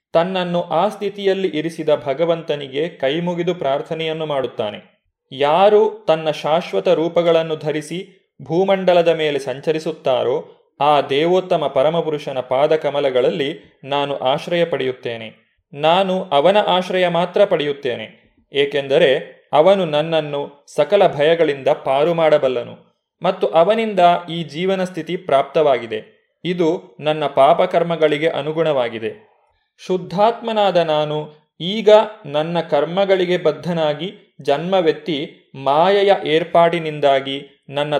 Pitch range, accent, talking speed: 150-185 Hz, native, 85 wpm